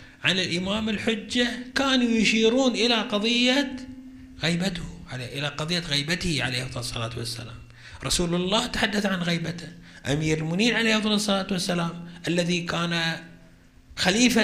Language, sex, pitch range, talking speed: Arabic, male, 140-205 Hz, 110 wpm